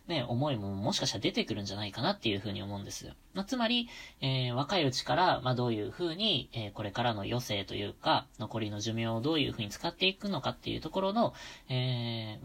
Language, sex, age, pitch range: Japanese, female, 20-39, 110-145 Hz